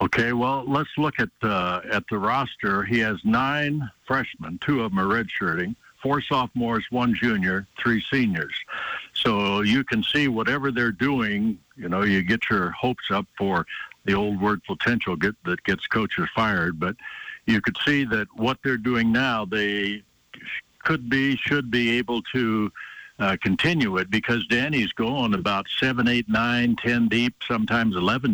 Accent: American